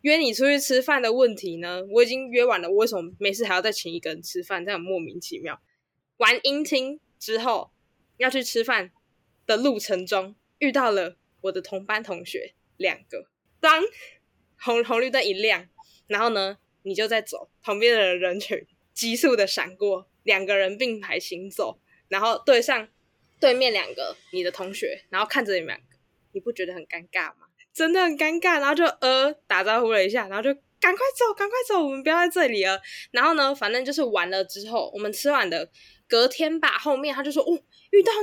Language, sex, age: Chinese, female, 10-29